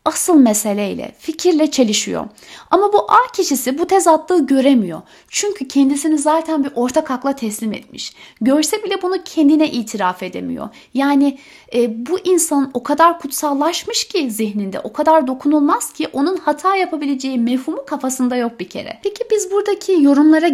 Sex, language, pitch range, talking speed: female, Turkish, 225-315 Hz, 150 wpm